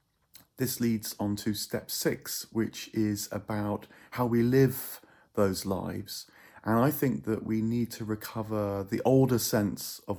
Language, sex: English, male